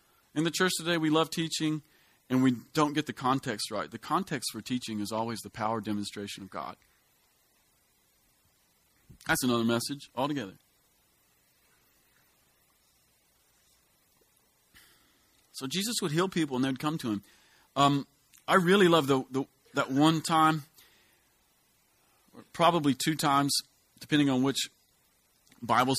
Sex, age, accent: male, 40-59, American